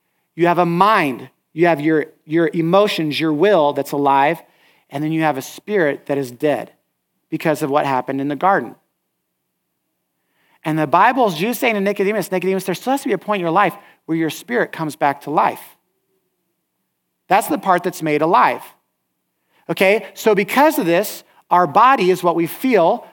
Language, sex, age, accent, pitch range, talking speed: English, male, 40-59, American, 155-205 Hz, 185 wpm